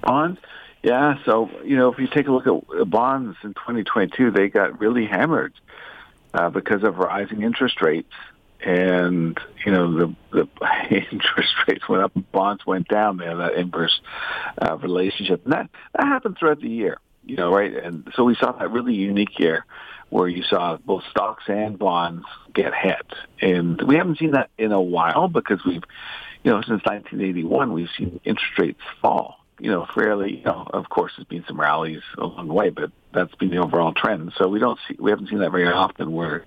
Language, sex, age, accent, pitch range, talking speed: English, male, 50-69, American, 90-120 Hz, 195 wpm